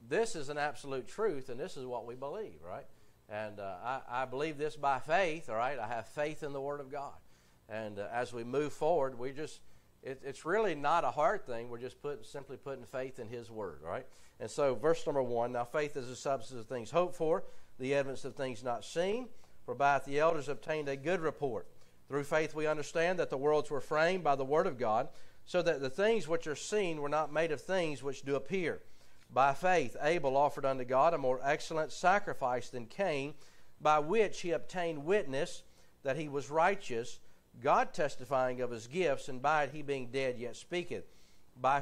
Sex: male